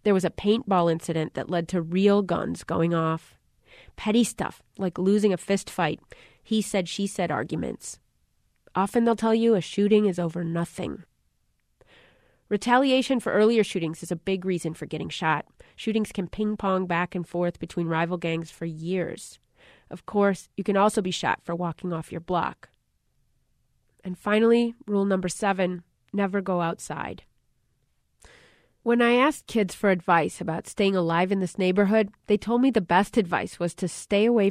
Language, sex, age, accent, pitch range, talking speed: English, female, 30-49, American, 170-205 Hz, 160 wpm